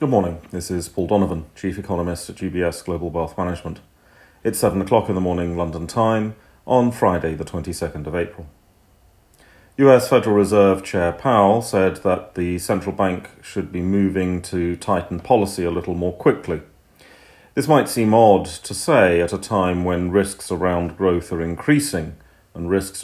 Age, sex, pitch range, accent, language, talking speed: 40-59, male, 85-105 Hz, British, English, 165 wpm